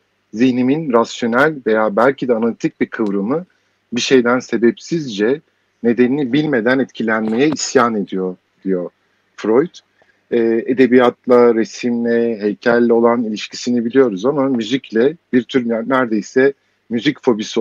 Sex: male